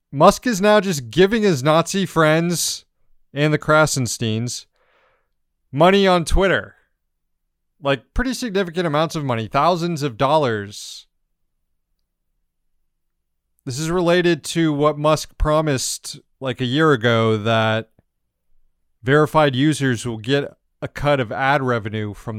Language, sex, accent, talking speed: English, male, American, 120 wpm